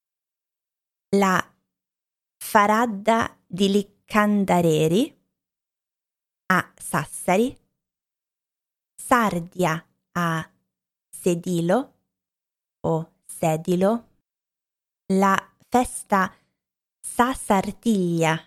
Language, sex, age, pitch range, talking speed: Italian, female, 20-39, 170-225 Hz, 45 wpm